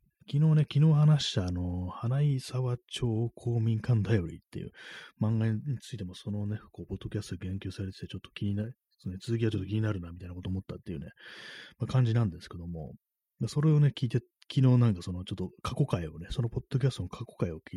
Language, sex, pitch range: Japanese, male, 90-120 Hz